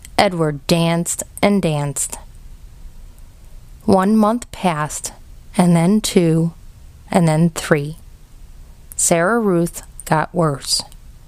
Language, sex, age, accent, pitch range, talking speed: English, female, 30-49, American, 160-200 Hz, 90 wpm